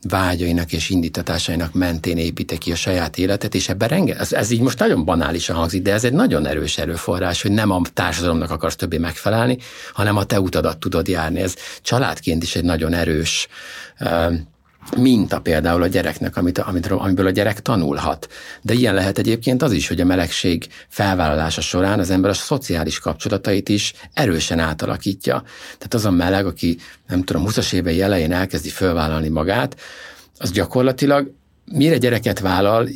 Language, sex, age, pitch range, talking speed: Hungarian, male, 60-79, 85-110 Hz, 165 wpm